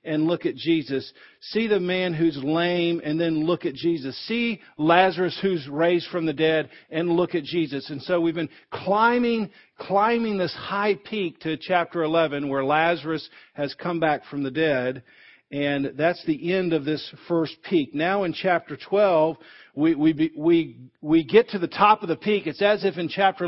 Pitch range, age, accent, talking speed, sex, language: 155-195 Hz, 50-69, American, 190 wpm, male, English